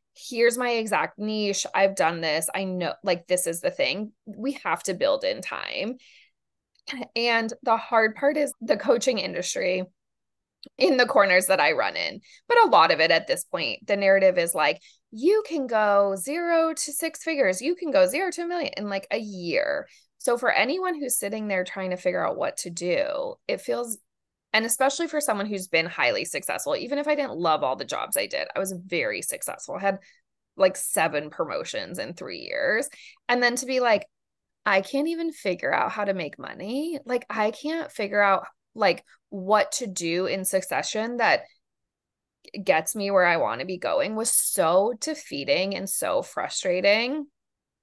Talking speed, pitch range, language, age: 190 wpm, 195-285 Hz, English, 20-39